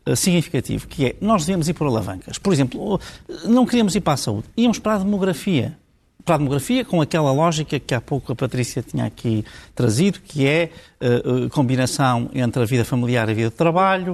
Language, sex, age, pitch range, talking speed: Portuguese, male, 50-69, 130-175 Hz, 200 wpm